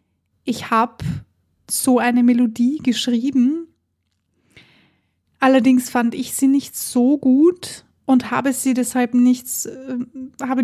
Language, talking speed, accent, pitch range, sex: German, 115 wpm, German, 240-265 Hz, female